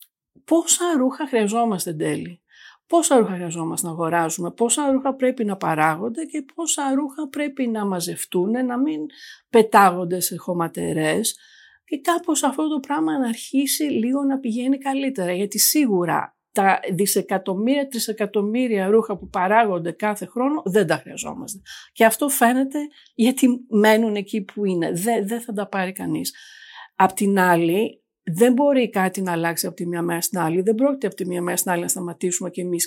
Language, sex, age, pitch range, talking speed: Greek, female, 50-69, 180-250 Hz, 160 wpm